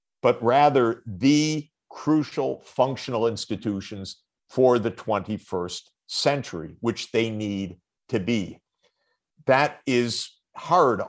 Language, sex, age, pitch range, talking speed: English, male, 50-69, 105-140 Hz, 95 wpm